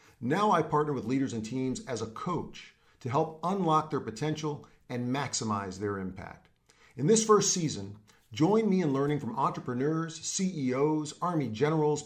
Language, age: English, 40-59